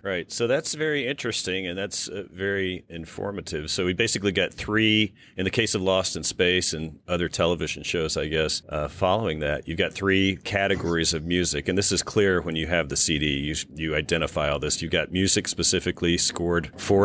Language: English